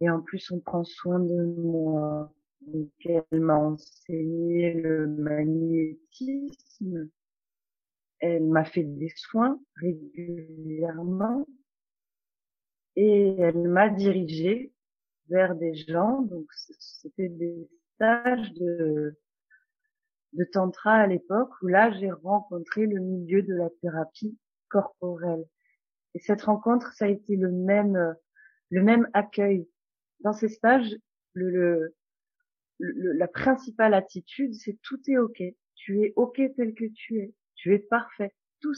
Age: 30-49